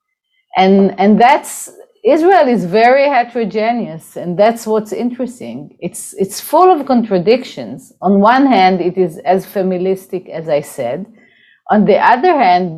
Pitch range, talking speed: 185-255 Hz, 140 wpm